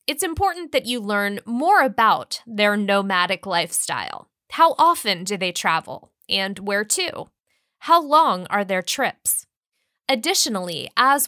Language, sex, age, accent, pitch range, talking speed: English, female, 10-29, American, 200-280 Hz, 135 wpm